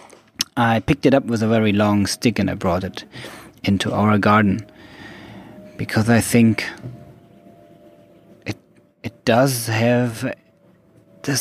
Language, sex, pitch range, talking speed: English, male, 105-125 Hz, 125 wpm